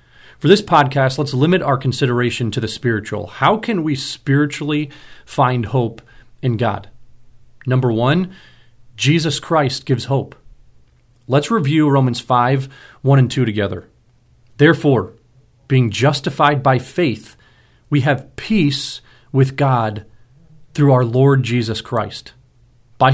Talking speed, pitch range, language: 125 wpm, 120-145 Hz, English